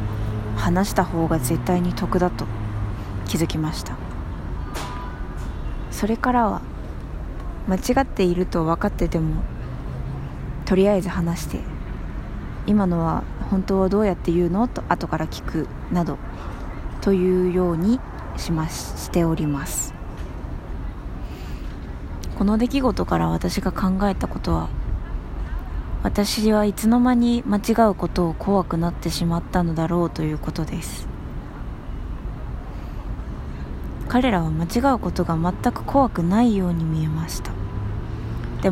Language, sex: Japanese, female